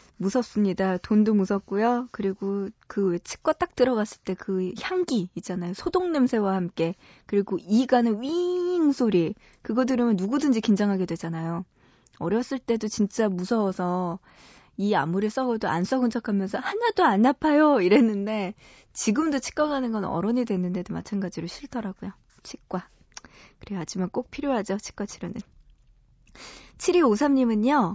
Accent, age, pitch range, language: native, 20-39, 195-265 Hz, Korean